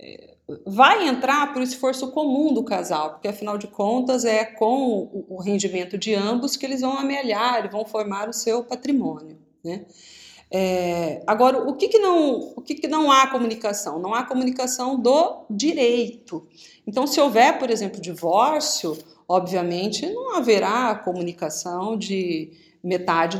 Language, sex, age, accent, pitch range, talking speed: Portuguese, female, 40-59, Brazilian, 185-255 Hz, 145 wpm